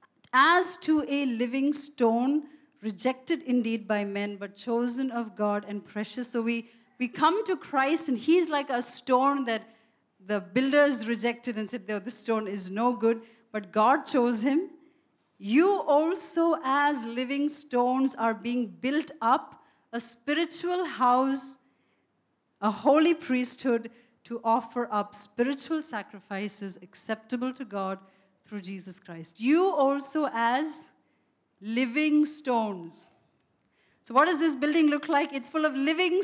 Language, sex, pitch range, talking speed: English, female, 230-310 Hz, 135 wpm